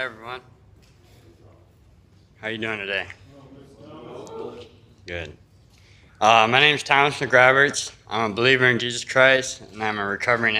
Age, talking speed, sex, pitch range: 20-39, 135 wpm, male, 100-125 Hz